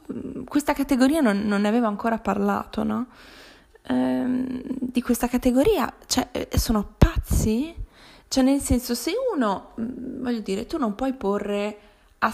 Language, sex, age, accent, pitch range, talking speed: Italian, female, 20-39, native, 180-225 Hz, 135 wpm